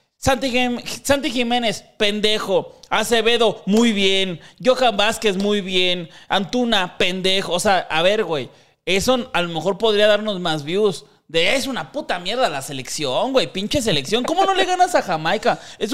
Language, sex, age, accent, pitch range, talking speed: Spanish, male, 30-49, Mexican, 165-225 Hz, 165 wpm